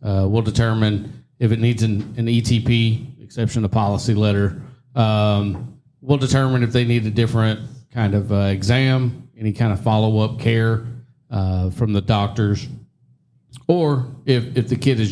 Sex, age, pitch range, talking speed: male, 40-59, 100-125 Hz, 165 wpm